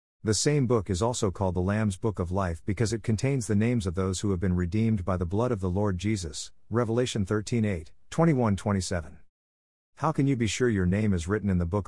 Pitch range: 90-115 Hz